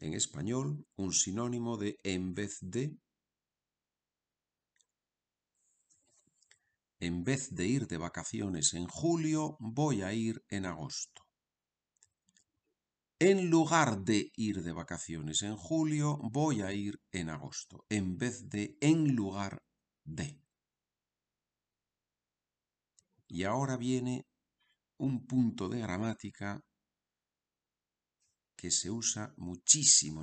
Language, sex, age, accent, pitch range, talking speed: Spanish, male, 50-69, Spanish, 90-125 Hz, 100 wpm